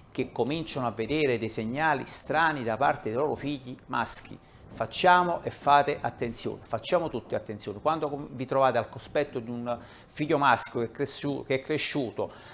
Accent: native